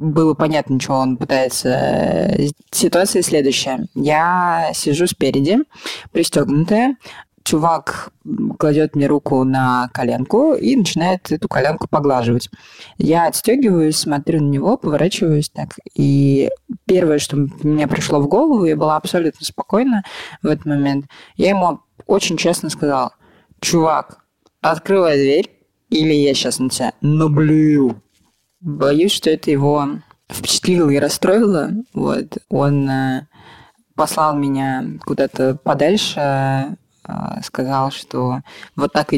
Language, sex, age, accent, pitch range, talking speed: Russian, female, 20-39, native, 135-180 Hz, 115 wpm